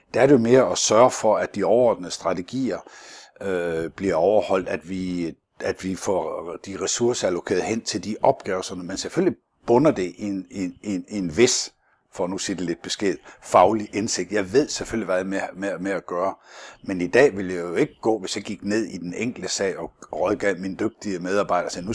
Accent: native